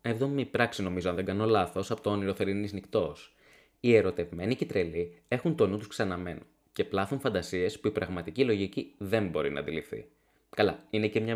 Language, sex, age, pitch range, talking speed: Greek, male, 20-39, 100-145 Hz, 185 wpm